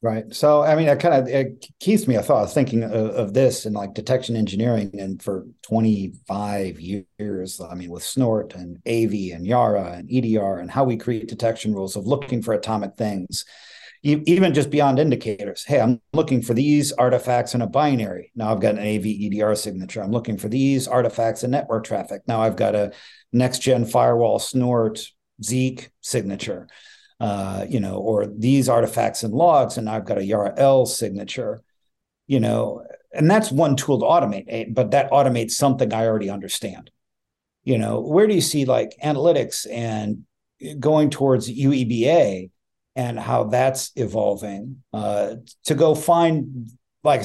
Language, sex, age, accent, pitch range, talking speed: English, male, 50-69, American, 105-135 Hz, 170 wpm